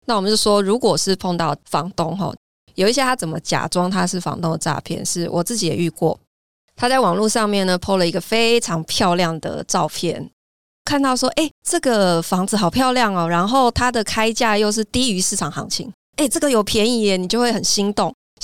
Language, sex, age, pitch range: Chinese, female, 20-39, 170-220 Hz